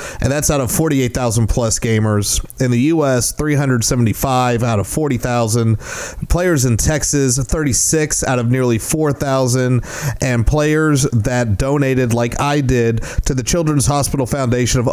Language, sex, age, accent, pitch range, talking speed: English, male, 30-49, American, 115-140 Hz, 140 wpm